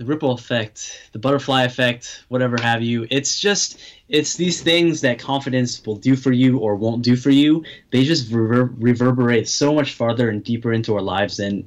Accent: American